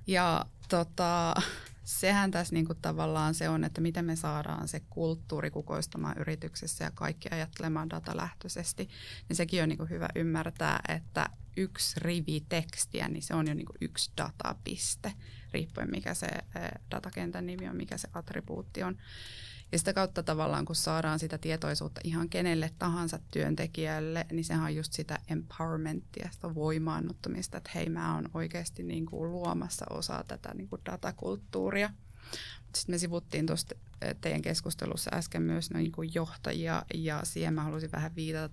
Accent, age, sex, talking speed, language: native, 20-39, female, 145 wpm, Finnish